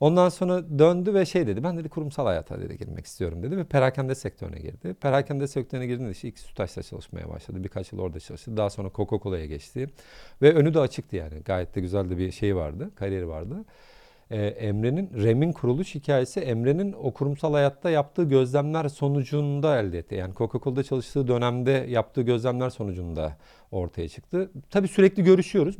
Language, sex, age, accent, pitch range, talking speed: Turkish, male, 40-59, native, 110-150 Hz, 170 wpm